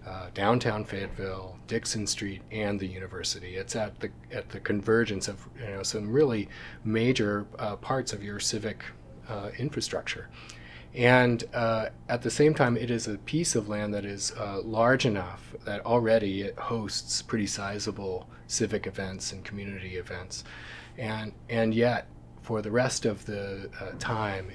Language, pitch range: English, 95-110 Hz